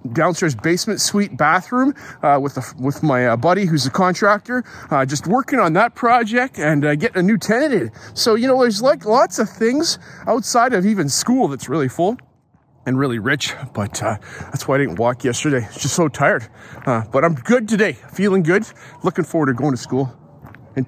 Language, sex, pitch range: English, male, 140-215 Hz